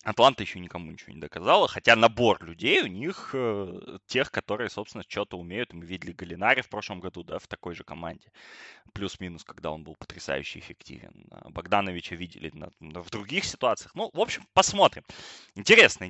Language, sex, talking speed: Russian, male, 160 wpm